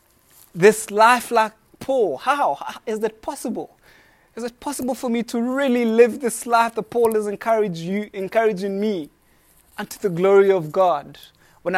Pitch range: 195-240 Hz